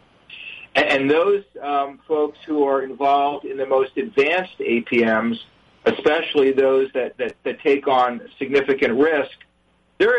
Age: 50-69